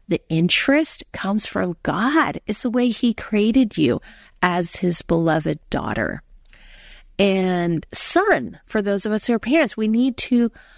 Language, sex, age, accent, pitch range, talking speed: English, female, 40-59, American, 180-245 Hz, 150 wpm